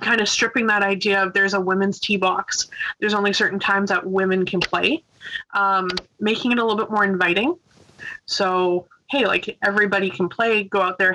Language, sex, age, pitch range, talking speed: English, female, 20-39, 190-220 Hz, 195 wpm